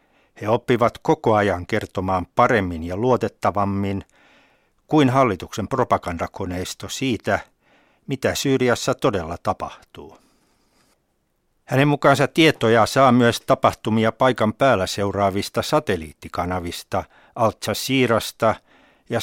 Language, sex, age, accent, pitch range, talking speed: Finnish, male, 60-79, native, 95-125 Hz, 90 wpm